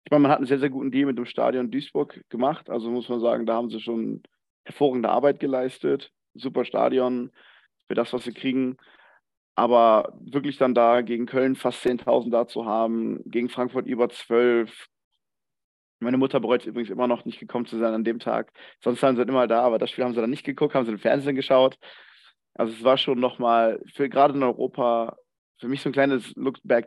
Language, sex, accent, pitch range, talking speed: German, male, German, 120-140 Hz, 210 wpm